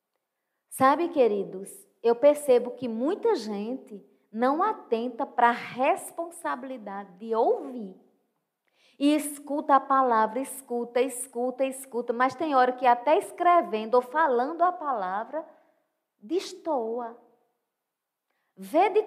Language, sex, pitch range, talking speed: Portuguese, female, 240-330 Hz, 105 wpm